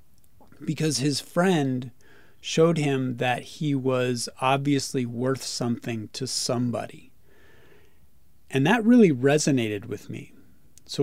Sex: male